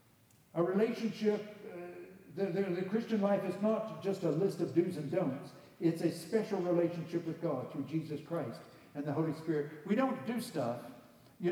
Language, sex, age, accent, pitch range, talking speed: English, male, 60-79, American, 145-205 Hz, 180 wpm